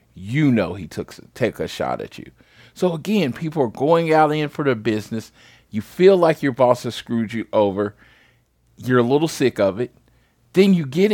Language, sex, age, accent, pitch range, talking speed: English, male, 40-59, American, 105-145 Hz, 200 wpm